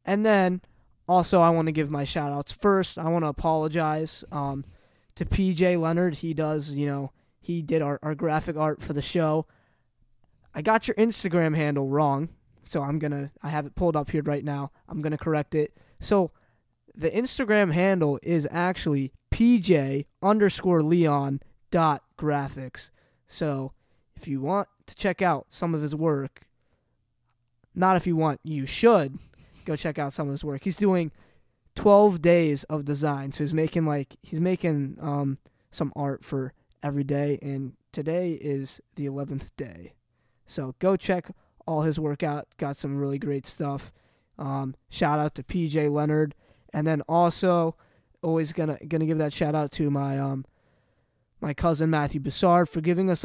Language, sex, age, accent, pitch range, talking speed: English, male, 20-39, American, 140-170 Hz, 170 wpm